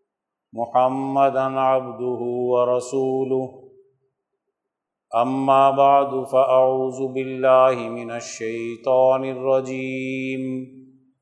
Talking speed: 55 wpm